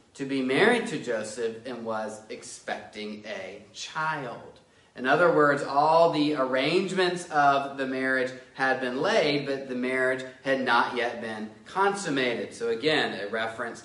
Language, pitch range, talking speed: English, 125-185 Hz, 145 wpm